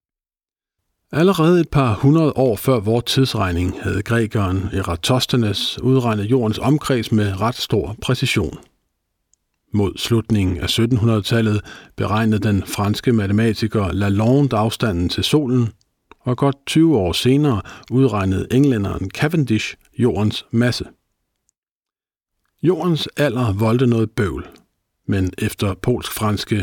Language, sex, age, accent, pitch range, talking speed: Danish, male, 50-69, native, 105-130 Hz, 110 wpm